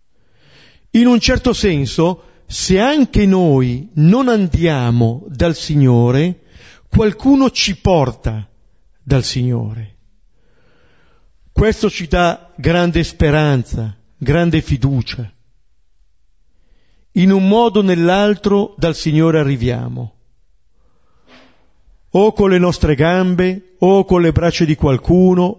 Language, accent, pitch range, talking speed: Italian, native, 110-180 Hz, 100 wpm